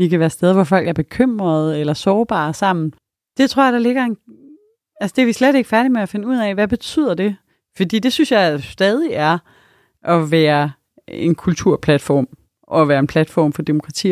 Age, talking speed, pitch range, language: 30-49, 205 wpm, 160-225 Hz, Danish